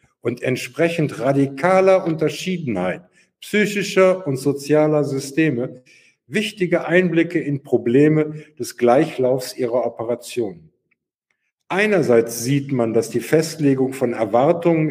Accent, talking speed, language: German, 95 wpm, German